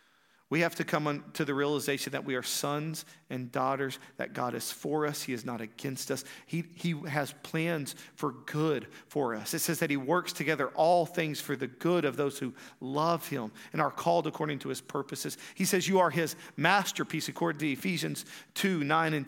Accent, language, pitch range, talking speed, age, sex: American, English, 155-190 Hz, 205 wpm, 40-59, male